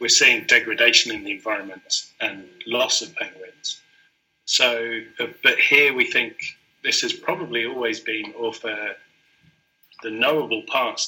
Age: 30-49